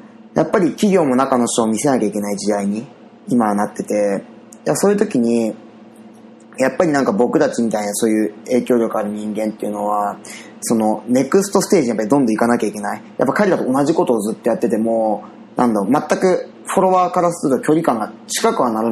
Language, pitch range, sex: Japanese, 110-145 Hz, male